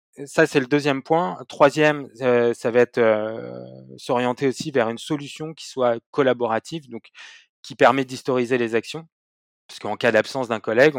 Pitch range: 115-145 Hz